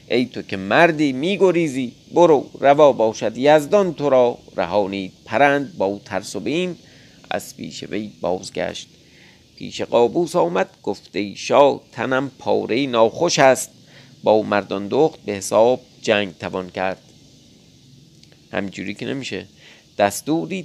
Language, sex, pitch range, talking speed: Persian, male, 100-140 Hz, 120 wpm